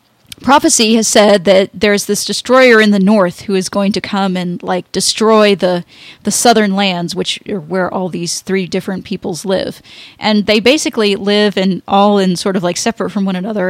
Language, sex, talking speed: English, female, 195 wpm